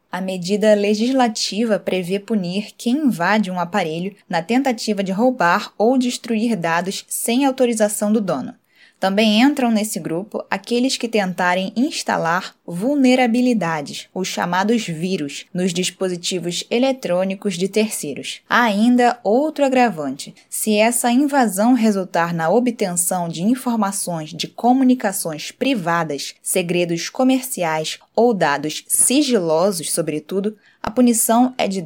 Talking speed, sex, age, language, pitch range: 115 wpm, female, 10-29, Portuguese, 185-240 Hz